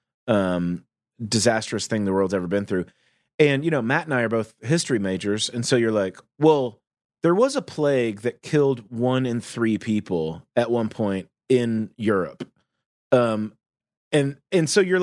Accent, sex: American, male